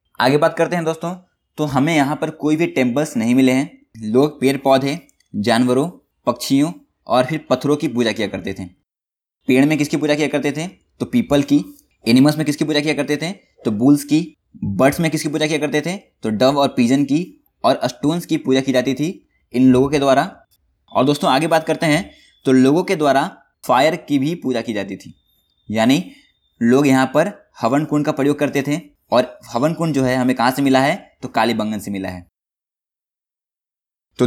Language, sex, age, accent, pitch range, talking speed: Hindi, male, 20-39, native, 130-155 Hz, 200 wpm